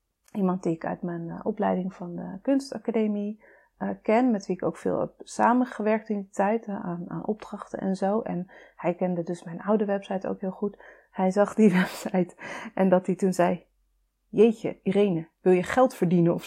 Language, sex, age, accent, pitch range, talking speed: Dutch, female, 30-49, Dutch, 190-235 Hz, 195 wpm